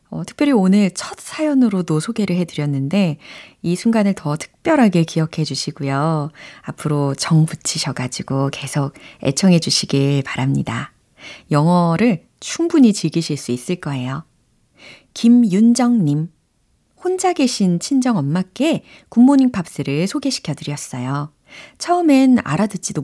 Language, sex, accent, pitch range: Korean, female, native, 155-240 Hz